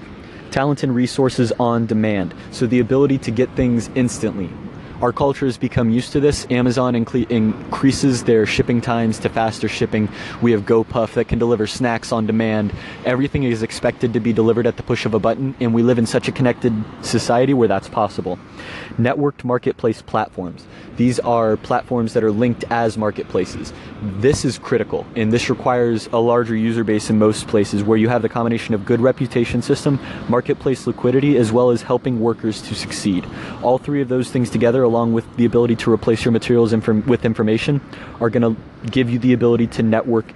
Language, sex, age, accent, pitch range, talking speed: English, male, 20-39, American, 110-125 Hz, 185 wpm